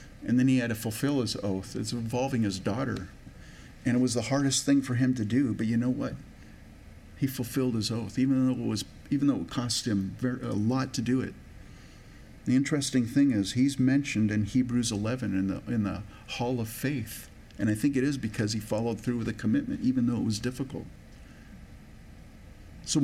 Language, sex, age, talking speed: English, male, 50-69, 205 wpm